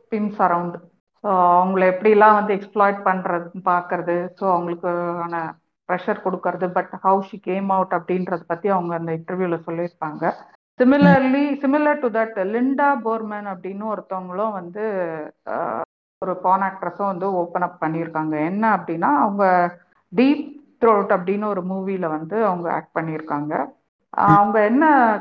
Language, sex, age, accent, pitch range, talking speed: Tamil, female, 50-69, native, 180-240 Hz, 130 wpm